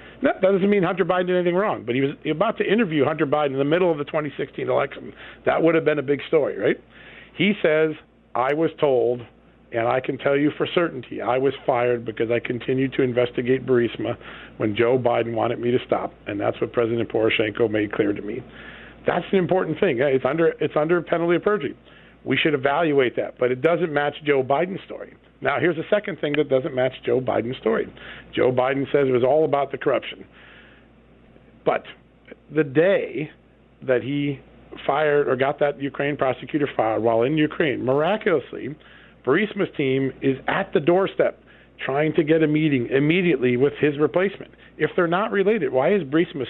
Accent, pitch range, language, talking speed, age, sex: American, 130-170 Hz, English, 190 wpm, 50-69, male